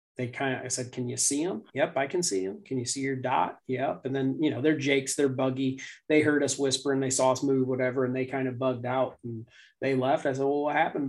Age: 30-49